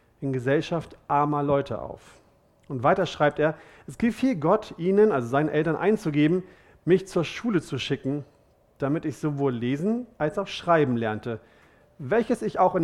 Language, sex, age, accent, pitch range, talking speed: German, male, 40-59, German, 135-185 Hz, 160 wpm